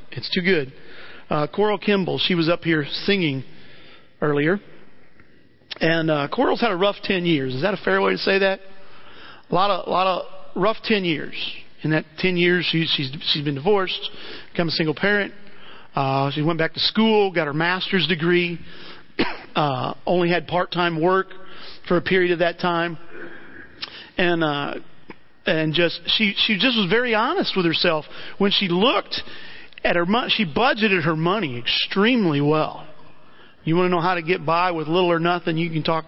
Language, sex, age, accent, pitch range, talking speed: English, male, 40-59, American, 170-215 Hz, 185 wpm